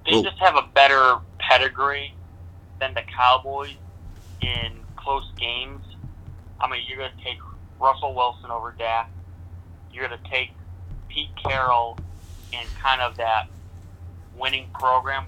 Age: 30-49